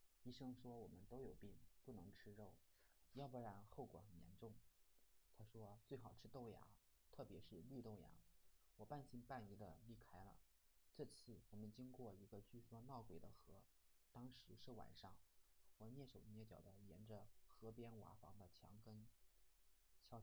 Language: Chinese